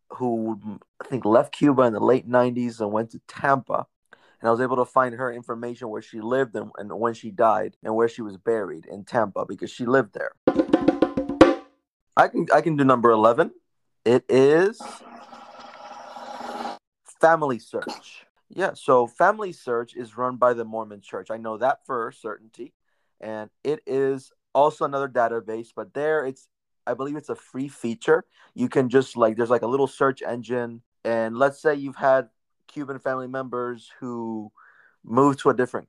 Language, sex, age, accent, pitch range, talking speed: English, male, 30-49, American, 115-135 Hz, 175 wpm